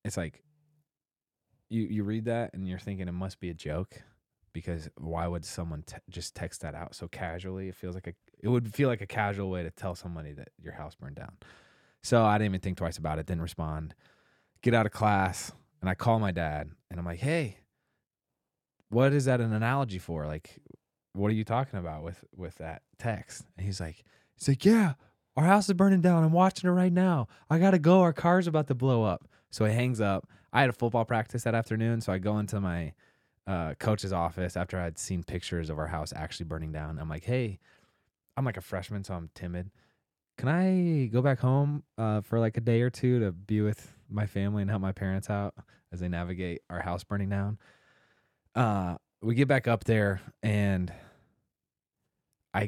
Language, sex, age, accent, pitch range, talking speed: English, male, 20-39, American, 90-120 Hz, 210 wpm